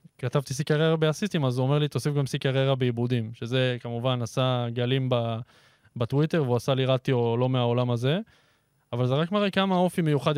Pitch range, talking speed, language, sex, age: 125-145 Hz, 180 wpm, Hebrew, male, 20-39